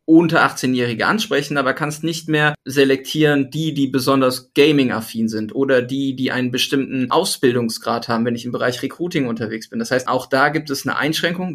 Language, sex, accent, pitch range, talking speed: German, male, German, 130-155 Hz, 180 wpm